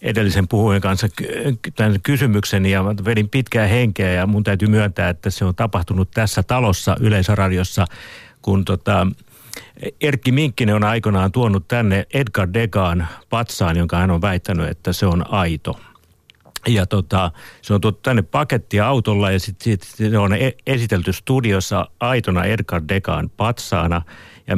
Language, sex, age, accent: Finnish, male, 50-69, native